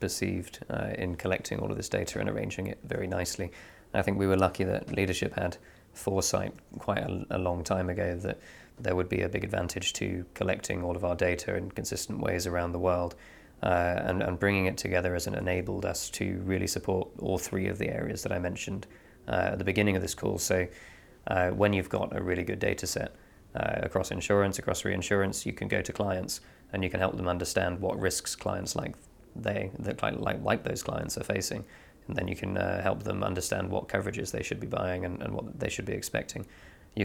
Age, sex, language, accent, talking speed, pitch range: 20-39, male, English, British, 220 wpm, 90-100 Hz